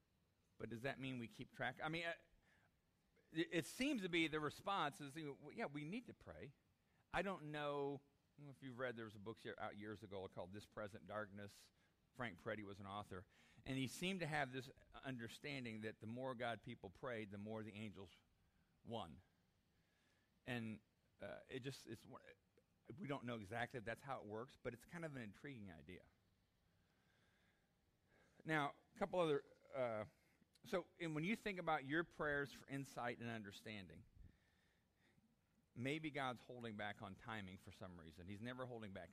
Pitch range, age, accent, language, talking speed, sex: 95-140 Hz, 50-69, American, English, 185 wpm, male